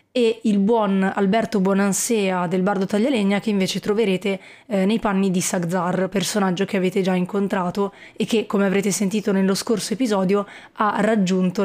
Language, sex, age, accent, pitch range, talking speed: Italian, female, 20-39, native, 190-210 Hz, 160 wpm